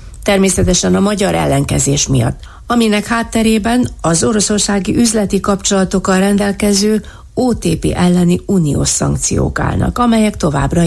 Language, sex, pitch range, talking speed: Hungarian, female, 150-200 Hz, 105 wpm